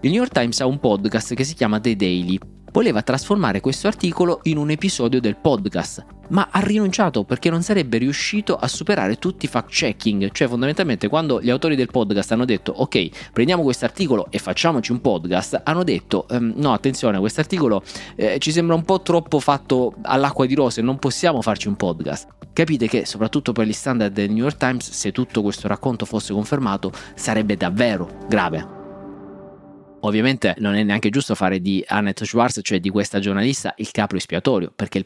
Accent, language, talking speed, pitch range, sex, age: native, Italian, 190 wpm, 100-135 Hz, male, 30-49